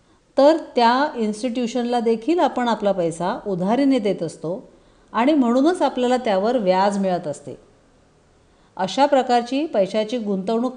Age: 40-59